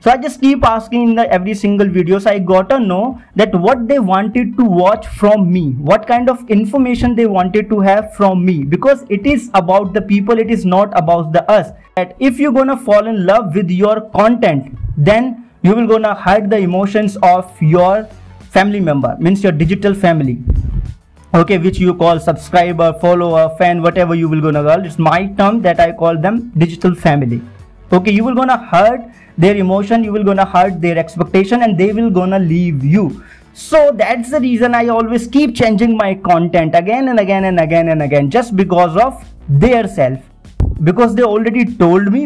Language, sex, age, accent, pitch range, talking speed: English, male, 30-49, Indian, 175-220 Hz, 195 wpm